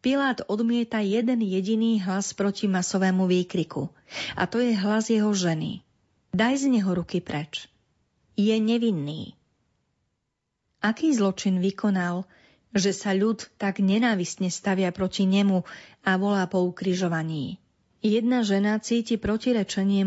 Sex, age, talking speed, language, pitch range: female, 40-59, 120 wpm, Slovak, 180-220 Hz